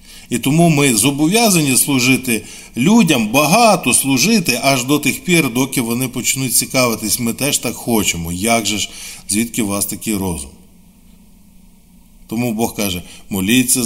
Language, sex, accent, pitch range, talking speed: Ukrainian, male, native, 105-135 Hz, 140 wpm